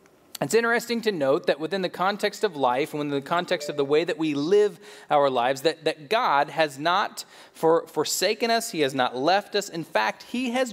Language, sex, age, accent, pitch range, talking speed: English, male, 30-49, American, 140-190 Hz, 220 wpm